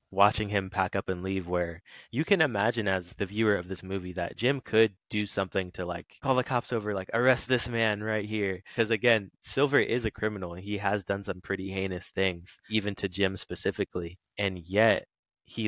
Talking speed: 205 wpm